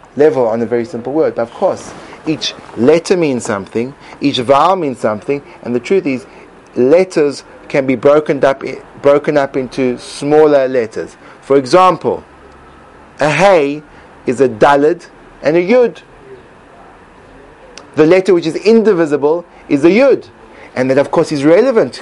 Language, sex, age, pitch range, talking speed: English, male, 30-49, 140-180 Hz, 150 wpm